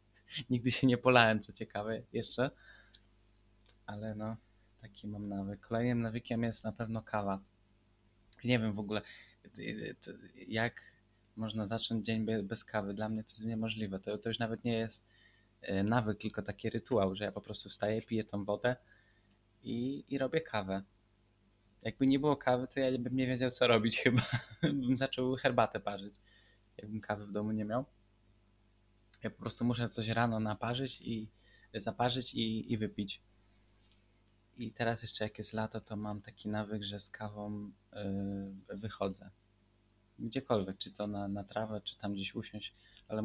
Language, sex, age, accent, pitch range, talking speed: Polish, male, 20-39, native, 100-115 Hz, 160 wpm